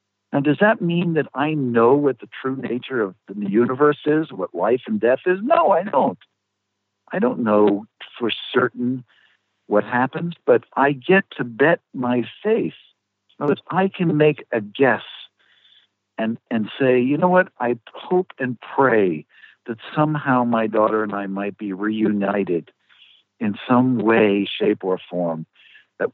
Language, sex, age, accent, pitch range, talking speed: English, male, 60-79, American, 110-165 Hz, 160 wpm